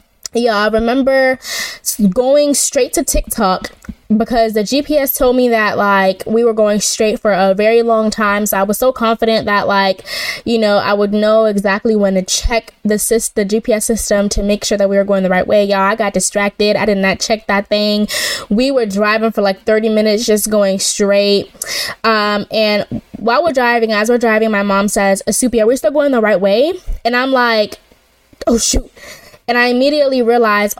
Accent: American